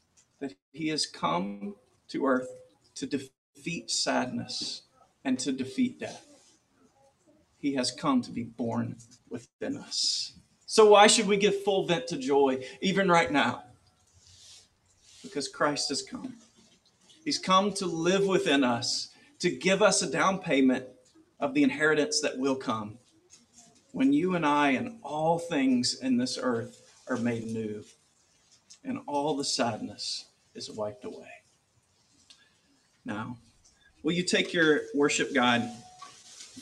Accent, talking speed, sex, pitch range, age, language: American, 135 wpm, male, 130-210 Hz, 40-59, English